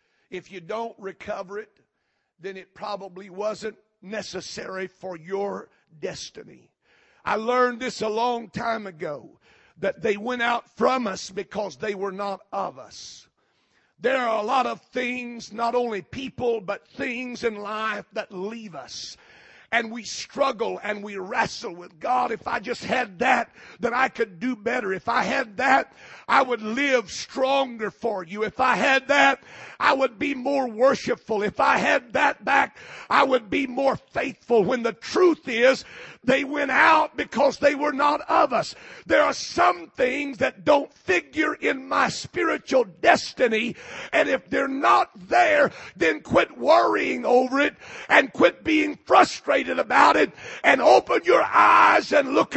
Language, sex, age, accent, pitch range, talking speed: English, male, 50-69, American, 210-275 Hz, 160 wpm